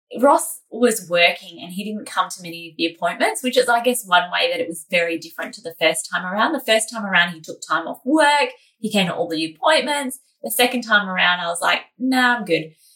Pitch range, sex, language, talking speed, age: 180-265 Hz, female, English, 245 wpm, 20-39